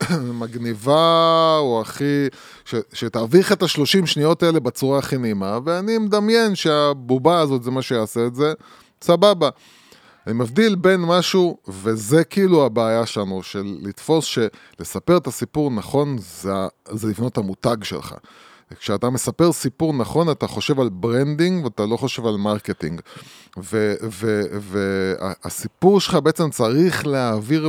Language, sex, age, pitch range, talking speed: Hebrew, male, 20-39, 110-160 Hz, 130 wpm